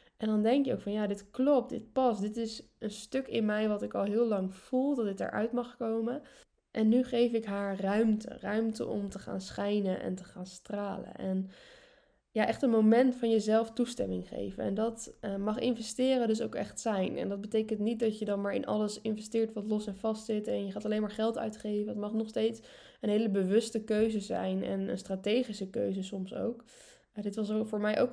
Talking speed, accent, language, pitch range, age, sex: 225 wpm, Dutch, Dutch, 200-230 Hz, 10-29, female